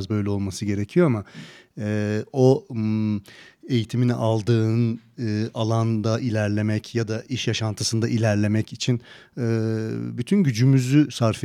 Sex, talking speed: male, 110 wpm